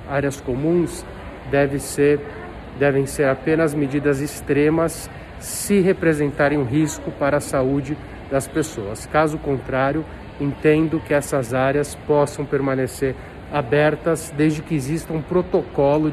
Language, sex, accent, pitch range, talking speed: Portuguese, male, Brazilian, 130-145 Hz, 120 wpm